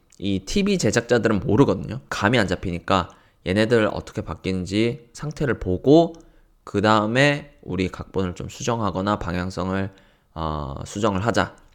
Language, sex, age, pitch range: Korean, male, 20-39, 90-120 Hz